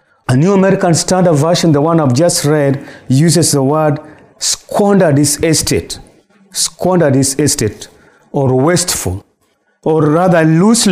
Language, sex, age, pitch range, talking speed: English, male, 40-59, 120-155 Hz, 130 wpm